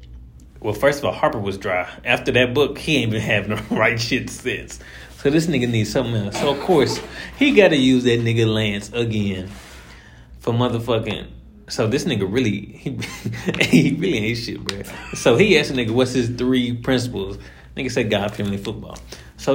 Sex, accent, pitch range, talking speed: male, American, 100-130 Hz, 190 wpm